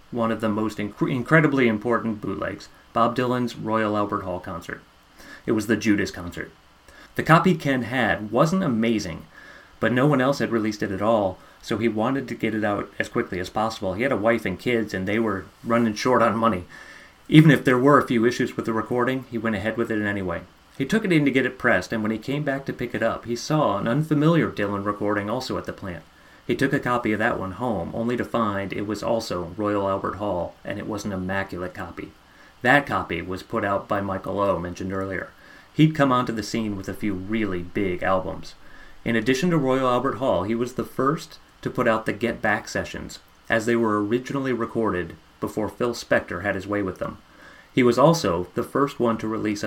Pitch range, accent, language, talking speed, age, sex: 100-125 Hz, American, English, 220 wpm, 30-49, male